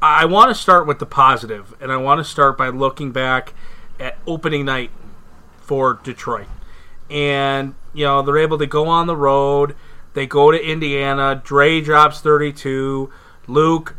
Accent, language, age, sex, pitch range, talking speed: American, English, 30-49, male, 135-155 Hz, 165 wpm